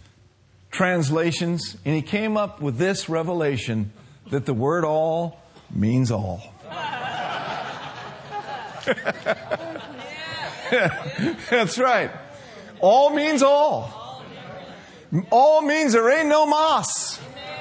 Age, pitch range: 50-69, 125-175 Hz